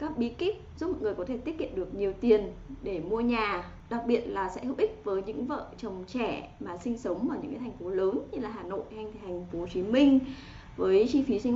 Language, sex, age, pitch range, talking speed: Vietnamese, female, 20-39, 215-280 Hz, 250 wpm